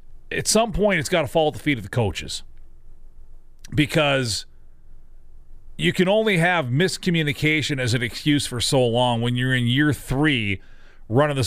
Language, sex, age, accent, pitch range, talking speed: English, male, 40-59, American, 115-155 Hz, 165 wpm